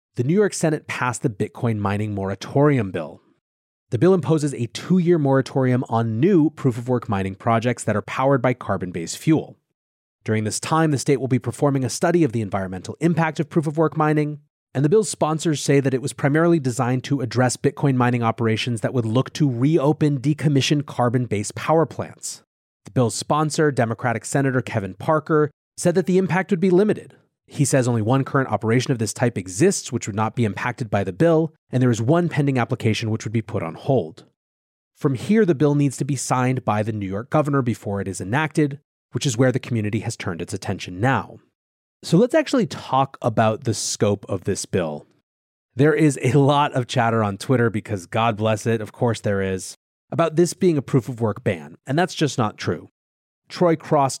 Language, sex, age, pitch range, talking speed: English, male, 30-49, 110-150 Hz, 200 wpm